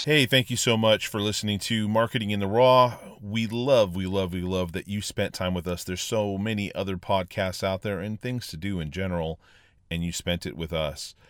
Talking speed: 230 wpm